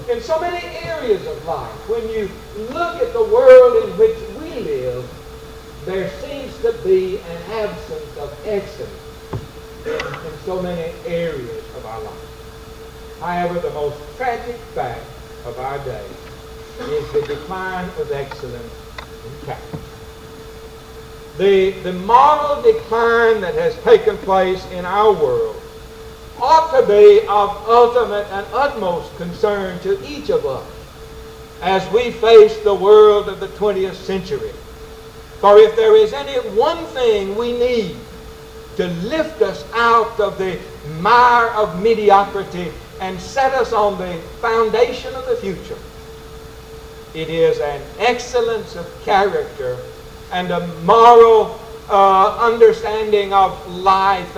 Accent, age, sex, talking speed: American, 60-79, male, 130 wpm